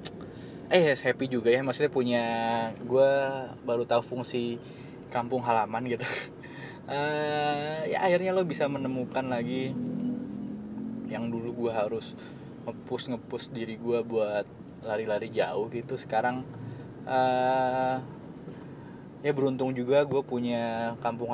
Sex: male